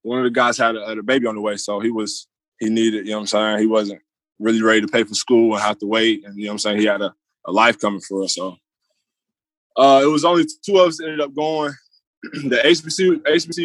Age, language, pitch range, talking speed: 20-39, English, 110-140 Hz, 270 wpm